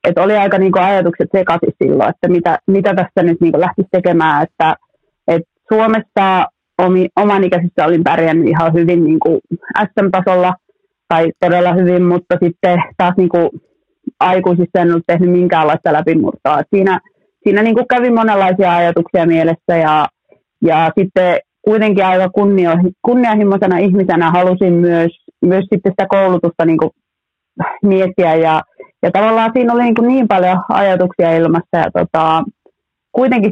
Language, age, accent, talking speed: Finnish, 30-49, native, 130 wpm